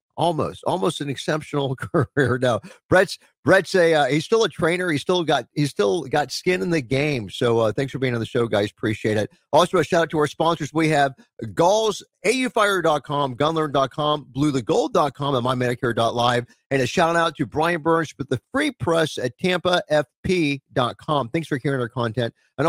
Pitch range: 120-155 Hz